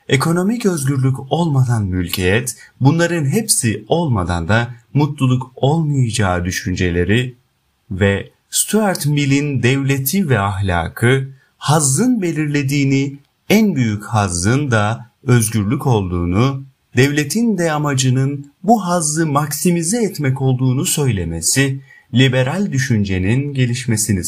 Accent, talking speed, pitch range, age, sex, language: native, 90 wpm, 115-160 Hz, 30-49, male, Turkish